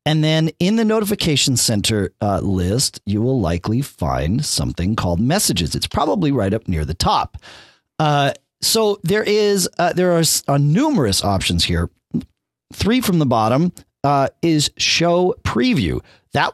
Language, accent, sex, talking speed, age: English, American, male, 150 wpm, 40-59